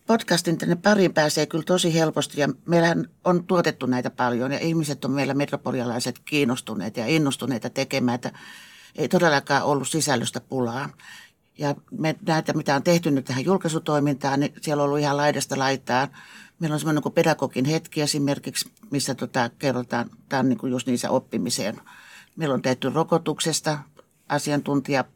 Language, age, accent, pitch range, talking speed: Finnish, 60-79, native, 135-170 Hz, 150 wpm